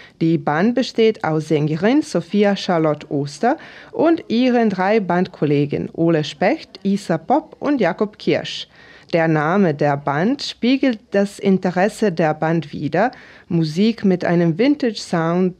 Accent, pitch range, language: German, 165-230 Hz, German